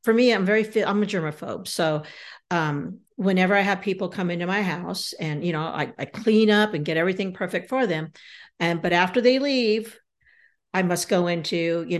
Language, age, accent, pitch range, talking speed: English, 50-69, American, 170-205 Hz, 200 wpm